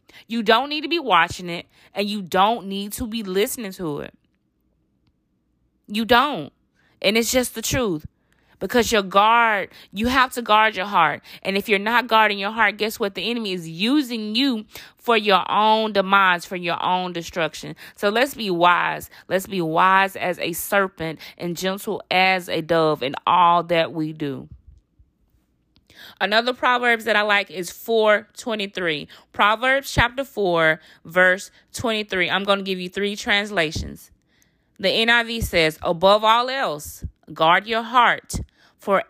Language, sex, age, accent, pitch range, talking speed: English, female, 20-39, American, 175-230 Hz, 160 wpm